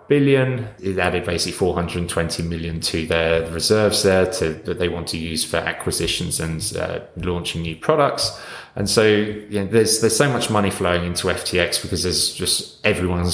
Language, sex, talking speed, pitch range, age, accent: English, male, 175 wpm, 85-100 Hz, 20-39, British